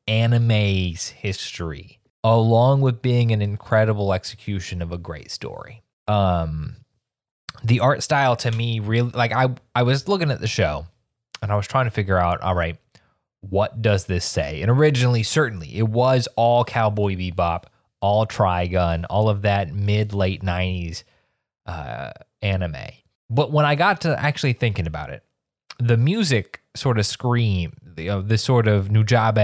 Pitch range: 100-125 Hz